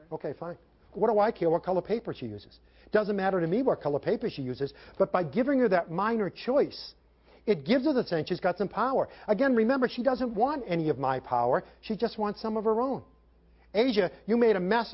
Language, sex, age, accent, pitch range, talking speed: English, male, 50-69, American, 145-215 Hz, 230 wpm